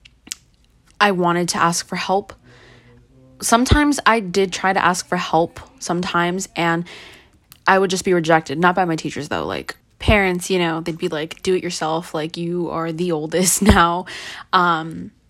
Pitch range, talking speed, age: 170-200 Hz, 170 wpm, 20-39